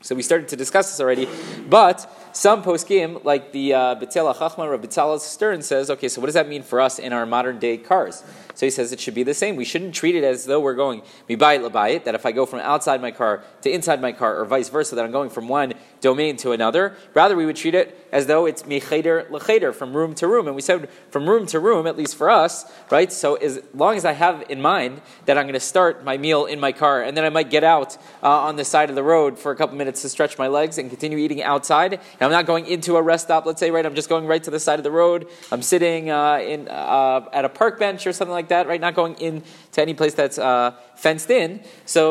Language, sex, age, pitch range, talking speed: English, male, 30-49, 140-170 Hz, 260 wpm